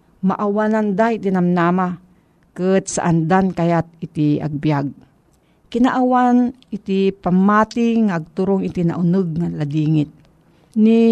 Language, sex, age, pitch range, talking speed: Filipino, female, 50-69, 165-220 Hz, 95 wpm